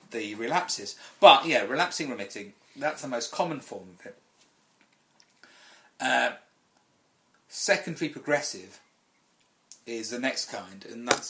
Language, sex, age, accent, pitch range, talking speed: English, male, 40-59, British, 110-145 Hz, 115 wpm